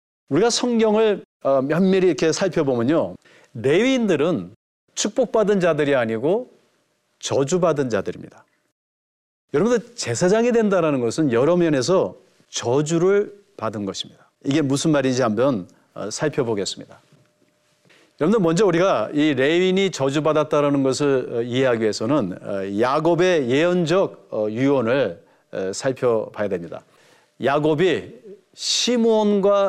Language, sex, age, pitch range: Korean, male, 40-59, 145-200 Hz